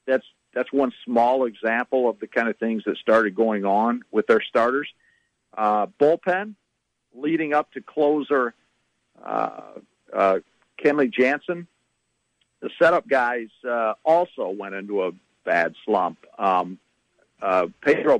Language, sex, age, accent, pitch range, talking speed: English, male, 50-69, American, 115-145 Hz, 130 wpm